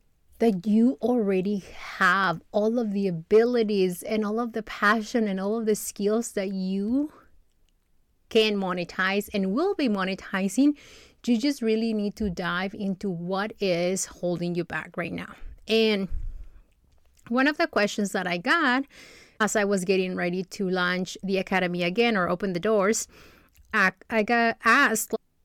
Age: 30-49